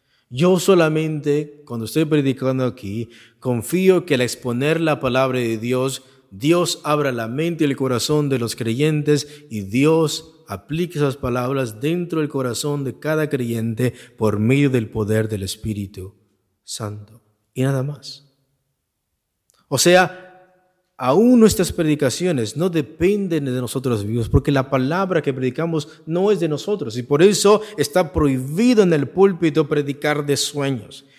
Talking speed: 145 wpm